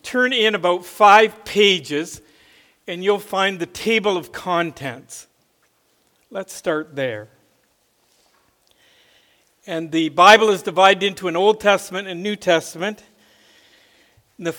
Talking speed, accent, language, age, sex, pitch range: 115 wpm, American, English, 50-69, male, 165-200 Hz